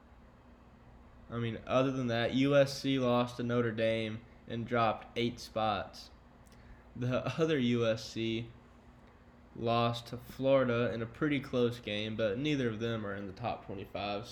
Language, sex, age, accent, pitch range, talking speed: English, male, 10-29, American, 115-135 Hz, 140 wpm